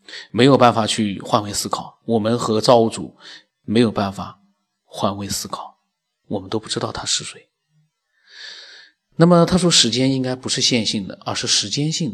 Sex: male